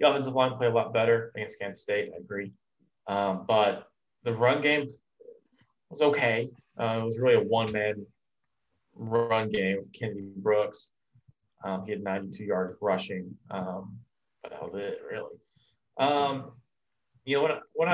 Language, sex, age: English, male, 20-39